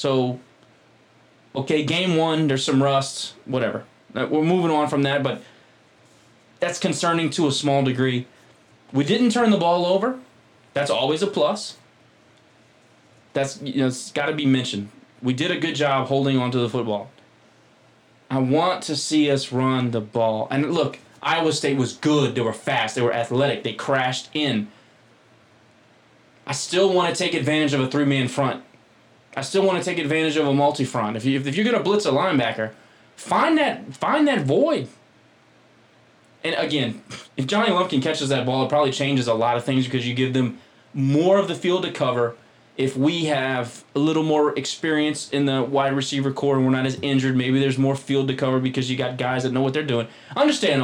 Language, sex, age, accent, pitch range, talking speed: English, male, 20-39, American, 130-155 Hz, 190 wpm